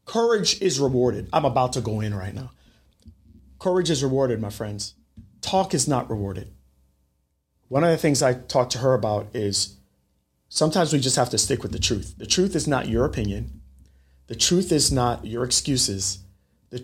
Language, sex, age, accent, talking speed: English, male, 30-49, American, 180 wpm